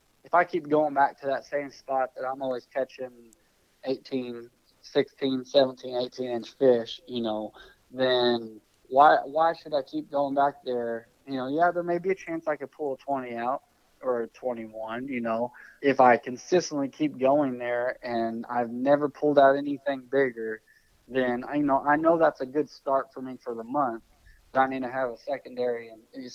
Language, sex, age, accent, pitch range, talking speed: English, male, 20-39, American, 120-135 Hz, 195 wpm